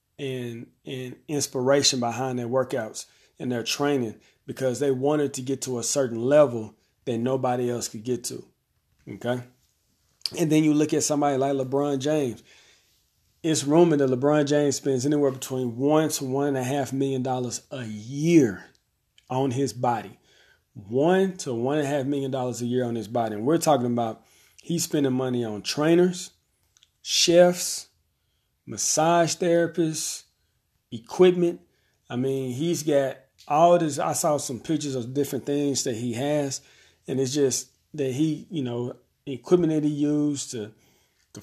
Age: 40-59